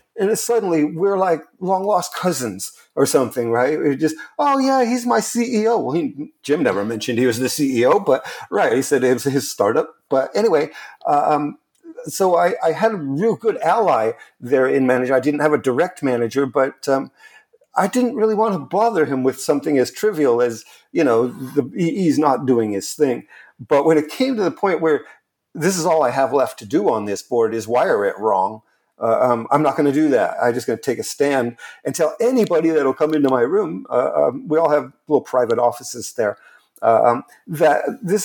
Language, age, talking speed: English, 50-69, 210 wpm